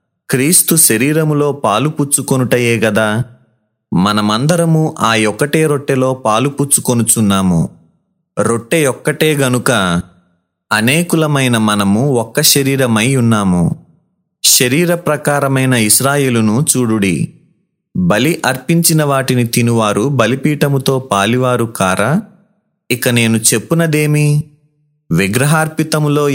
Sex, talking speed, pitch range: male, 65 wpm, 115-150 Hz